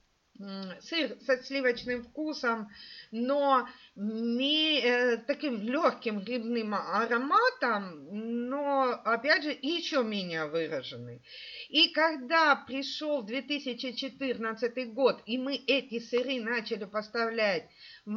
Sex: female